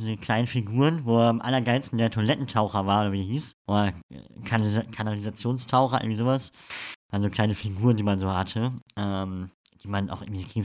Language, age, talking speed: German, 50-69, 175 wpm